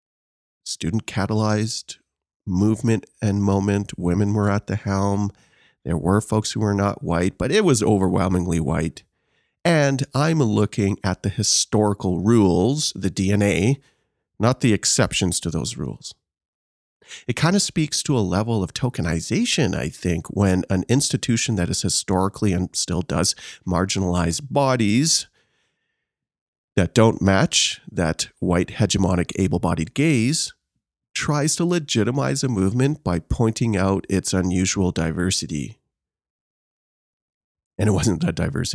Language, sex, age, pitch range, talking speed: English, male, 40-59, 90-115 Hz, 130 wpm